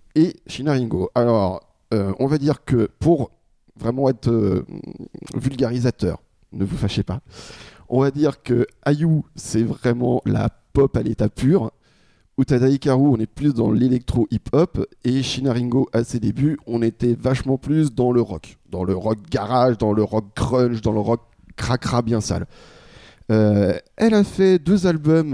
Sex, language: male, French